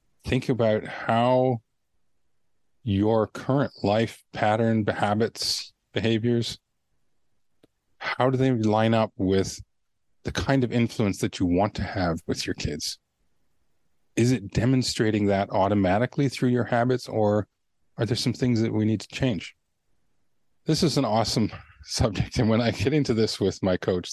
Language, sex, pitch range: English, male, 95-120 Hz